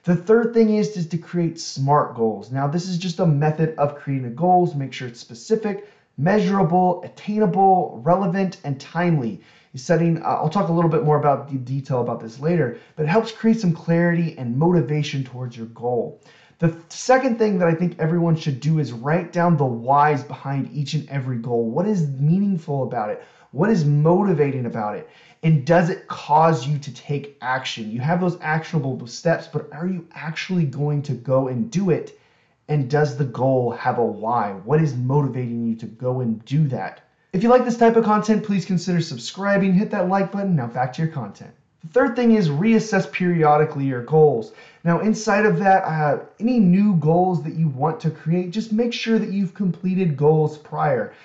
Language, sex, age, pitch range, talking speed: English, male, 30-49, 145-190 Hz, 195 wpm